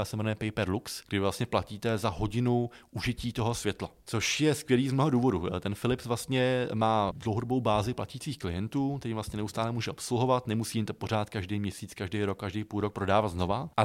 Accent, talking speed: native, 180 wpm